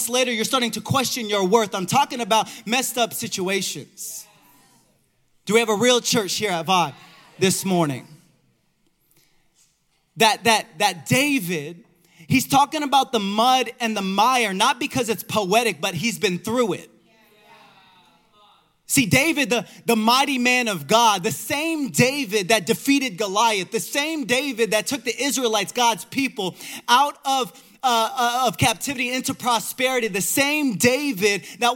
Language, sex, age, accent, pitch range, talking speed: English, male, 20-39, American, 190-250 Hz, 150 wpm